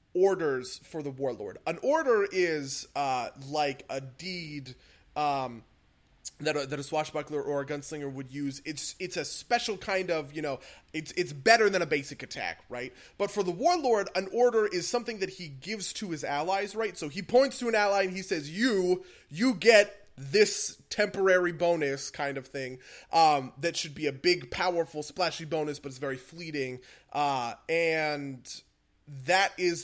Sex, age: male, 20-39